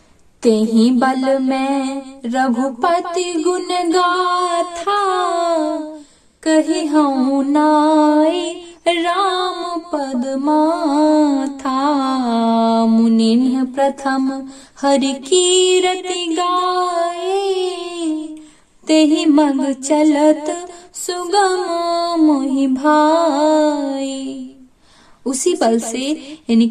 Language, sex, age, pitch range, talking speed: Hindi, female, 20-39, 230-315 Hz, 65 wpm